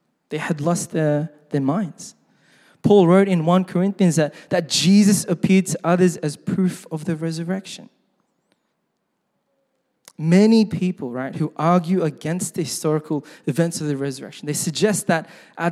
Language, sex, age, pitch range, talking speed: English, male, 20-39, 155-195 Hz, 145 wpm